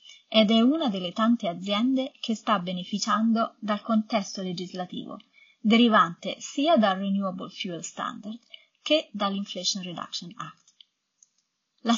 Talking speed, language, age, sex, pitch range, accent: 115 wpm, Italian, 30-49, female, 200-250 Hz, native